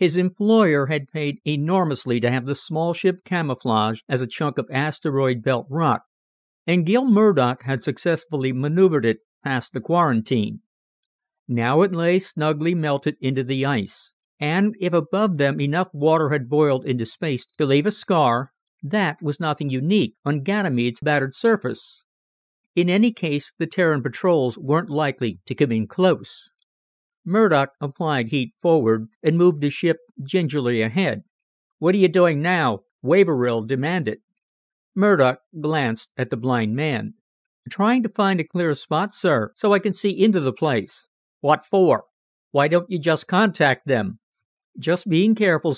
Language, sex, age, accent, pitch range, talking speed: English, male, 50-69, American, 135-180 Hz, 155 wpm